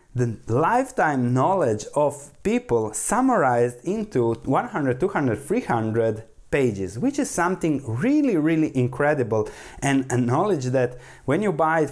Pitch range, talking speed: 125-165 Hz, 125 wpm